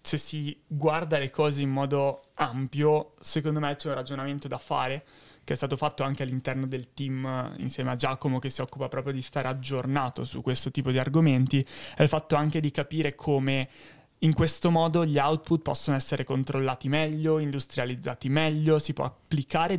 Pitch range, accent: 130-150 Hz, native